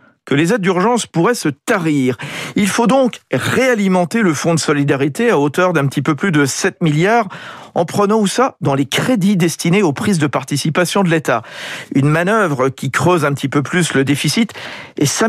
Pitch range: 115-165 Hz